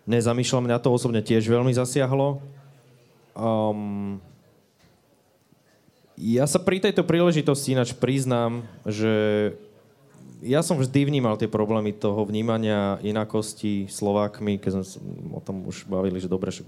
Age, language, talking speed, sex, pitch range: 20-39, Slovak, 130 wpm, male, 100-125 Hz